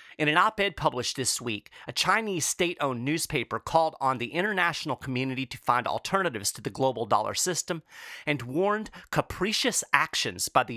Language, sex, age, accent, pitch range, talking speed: English, male, 40-59, American, 130-180 Hz, 160 wpm